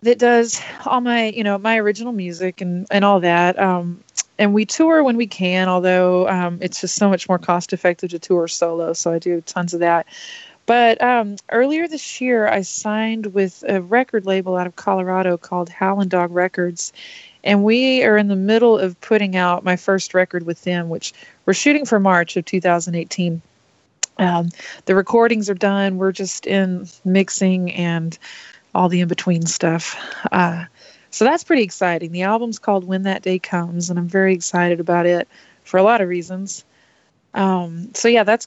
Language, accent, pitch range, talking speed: English, American, 175-210 Hz, 180 wpm